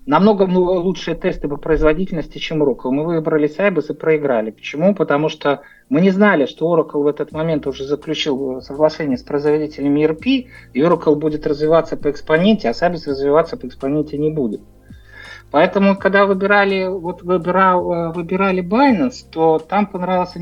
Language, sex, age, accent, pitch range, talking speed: Russian, male, 50-69, native, 145-190 Hz, 150 wpm